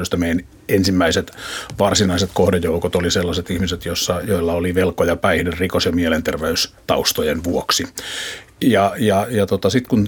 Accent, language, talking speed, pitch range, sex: native, Finnish, 130 wpm, 90-105 Hz, male